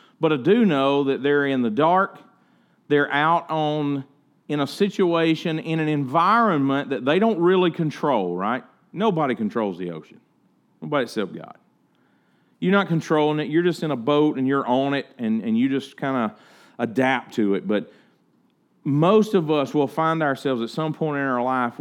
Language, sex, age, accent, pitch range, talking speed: English, male, 40-59, American, 115-160 Hz, 180 wpm